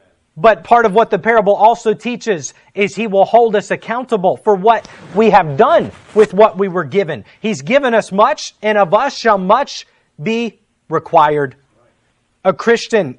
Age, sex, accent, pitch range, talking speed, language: 30-49, male, American, 200-245 Hz, 170 wpm, English